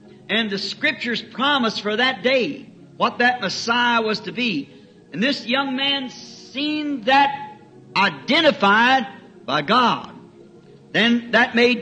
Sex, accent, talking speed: male, American, 125 wpm